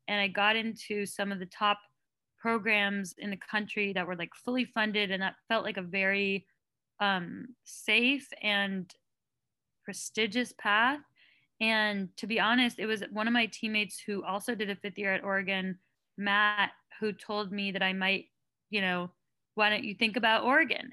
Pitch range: 195-225 Hz